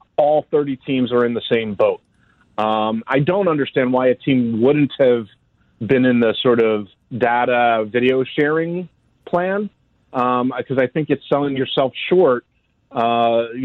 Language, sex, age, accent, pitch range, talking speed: English, male, 40-59, American, 115-140 Hz, 155 wpm